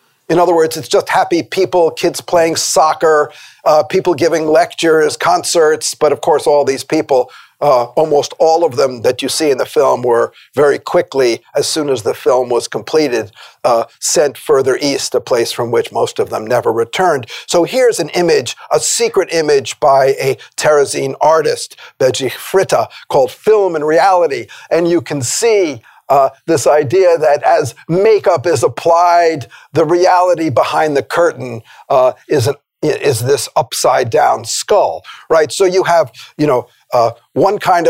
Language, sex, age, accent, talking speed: English, male, 50-69, American, 165 wpm